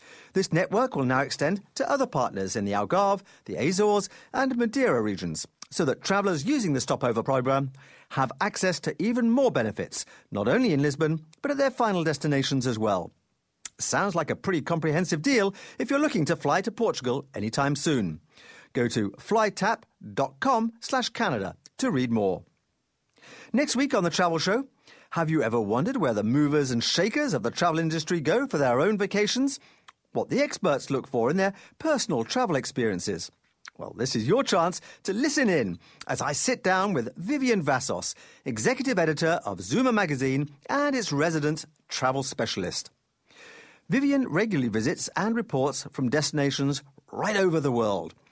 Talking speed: 165 wpm